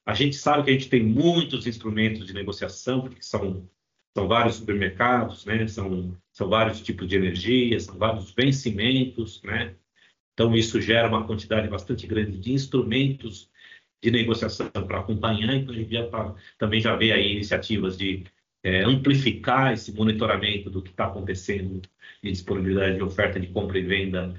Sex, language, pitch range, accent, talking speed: male, Portuguese, 100-125 Hz, Brazilian, 155 wpm